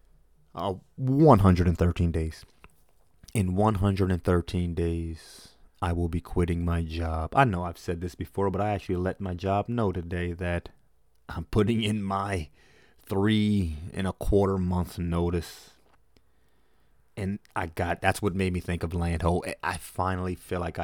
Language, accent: English, American